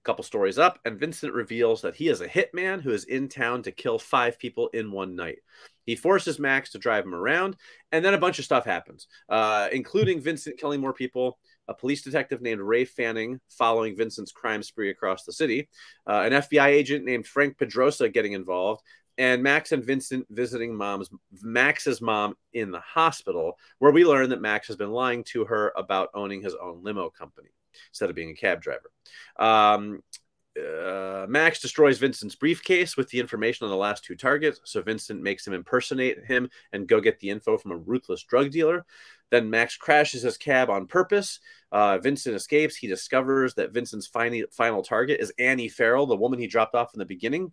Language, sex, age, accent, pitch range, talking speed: English, male, 30-49, American, 115-165 Hz, 195 wpm